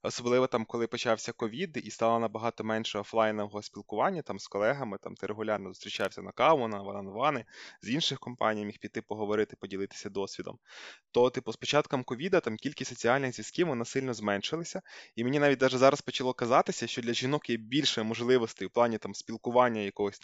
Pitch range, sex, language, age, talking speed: 110-130 Hz, male, Ukrainian, 20-39, 175 wpm